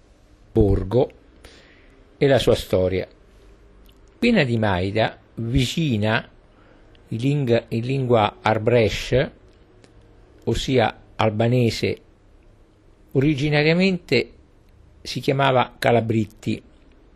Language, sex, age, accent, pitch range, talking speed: Italian, male, 50-69, native, 100-135 Hz, 65 wpm